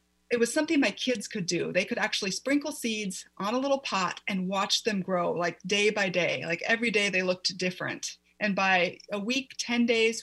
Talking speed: 210 wpm